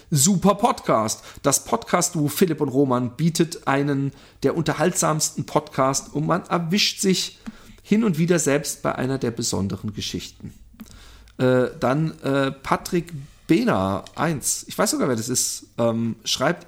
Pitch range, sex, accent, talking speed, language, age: 135-190 Hz, male, German, 145 wpm, German, 40-59